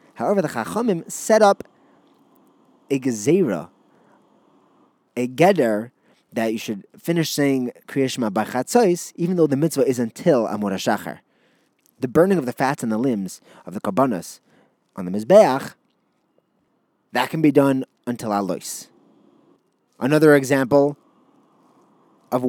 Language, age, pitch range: English, 20-39, 120-175 Hz